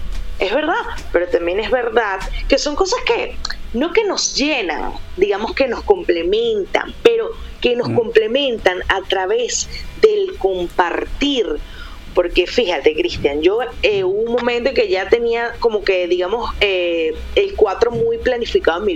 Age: 30-49